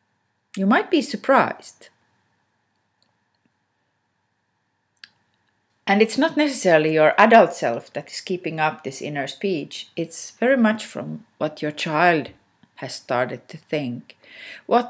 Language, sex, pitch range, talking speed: English, female, 115-195 Hz, 120 wpm